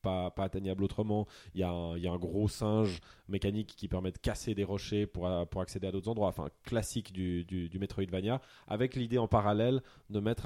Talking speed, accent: 225 wpm, French